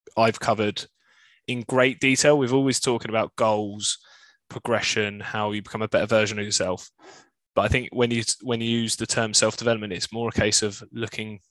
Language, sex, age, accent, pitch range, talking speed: English, male, 10-29, British, 110-120 Hz, 190 wpm